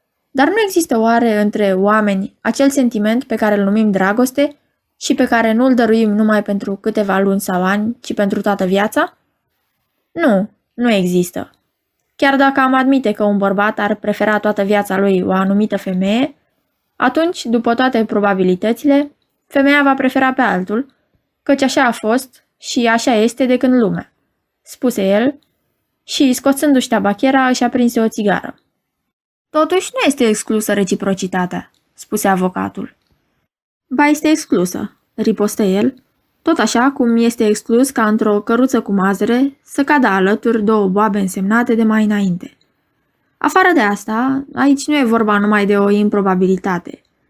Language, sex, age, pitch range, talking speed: Romanian, female, 20-39, 205-265 Hz, 150 wpm